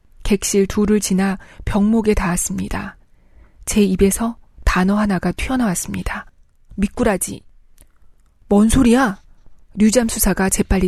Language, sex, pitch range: Korean, female, 190-225 Hz